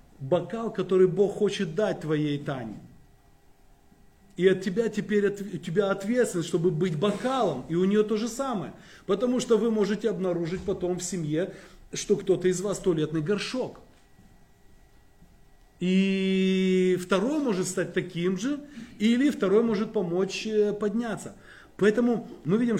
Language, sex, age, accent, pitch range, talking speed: Russian, male, 30-49, native, 180-230 Hz, 135 wpm